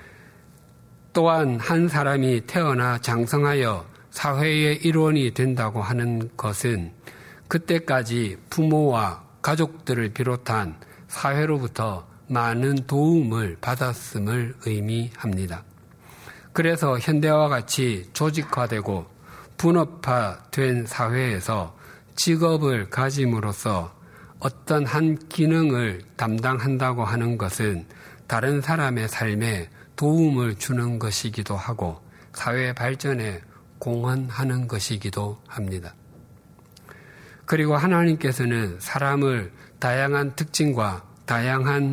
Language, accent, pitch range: Korean, native, 110-145 Hz